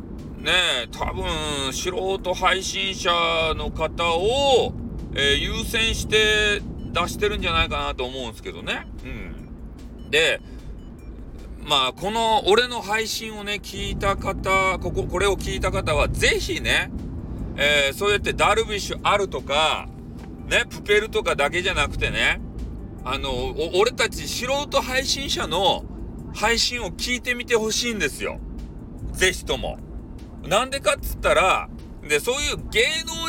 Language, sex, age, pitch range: Japanese, male, 40-59, 185-275 Hz